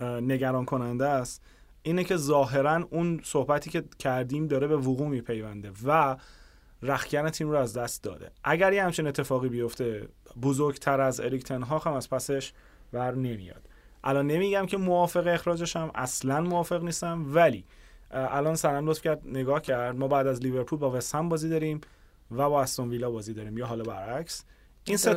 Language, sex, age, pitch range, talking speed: Persian, male, 30-49, 125-155 Hz, 160 wpm